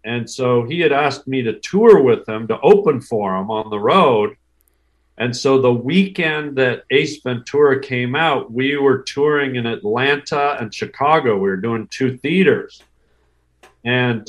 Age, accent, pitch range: 50-69, American, 110-140 Hz